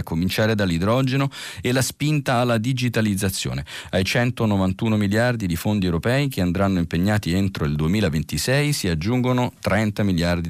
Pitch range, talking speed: 90-125 Hz, 135 wpm